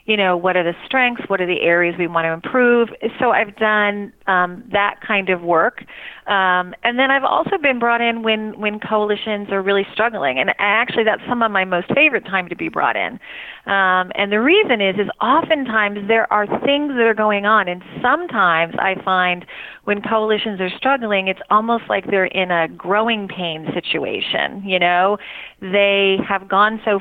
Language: English